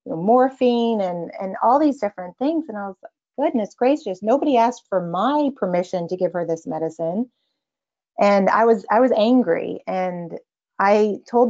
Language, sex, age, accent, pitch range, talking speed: English, female, 30-49, American, 185-245 Hz, 170 wpm